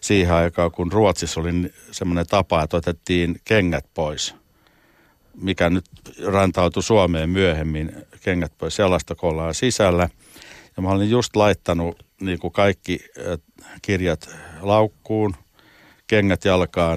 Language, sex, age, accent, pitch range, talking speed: Finnish, male, 60-79, native, 85-100 Hz, 115 wpm